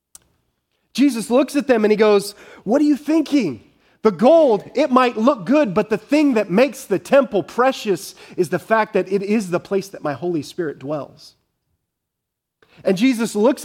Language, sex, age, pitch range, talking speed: English, male, 30-49, 190-240 Hz, 180 wpm